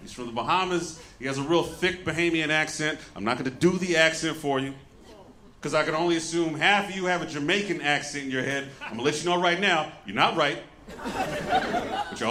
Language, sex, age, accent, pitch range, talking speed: English, male, 40-59, American, 140-205 Hz, 235 wpm